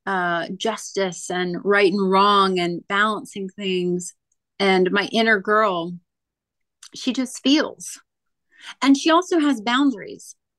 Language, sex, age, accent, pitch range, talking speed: English, female, 30-49, American, 195-240 Hz, 120 wpm